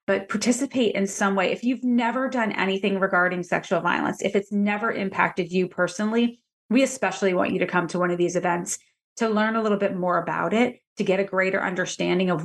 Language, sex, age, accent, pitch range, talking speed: English, female, 30-49, American, 180-215 Hz, 210 wpm